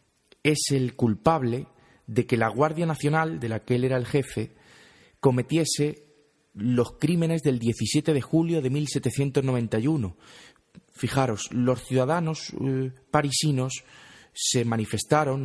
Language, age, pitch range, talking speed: Spanish, 30-49, 120-150 Hz, 120 wpm